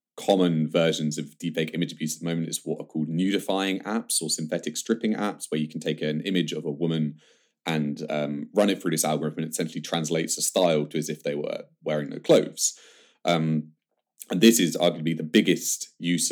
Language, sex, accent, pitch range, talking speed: English, male, British, 75-85 Hz, 210 wpm